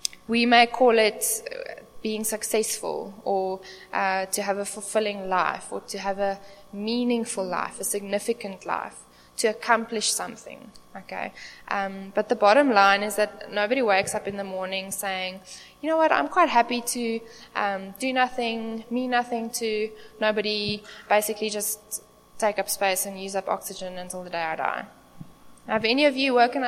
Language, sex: English, female